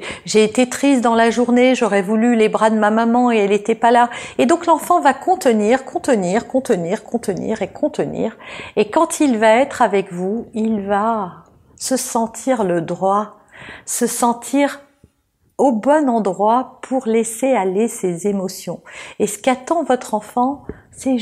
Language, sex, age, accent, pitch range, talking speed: French, female, 50-69, French, 210-250 Hz, 165 wpm